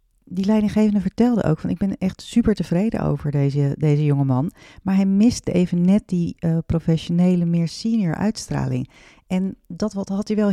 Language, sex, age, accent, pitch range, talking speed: Dutch, female, 40-59, Dutch, 155-195 Hz, 175 wpm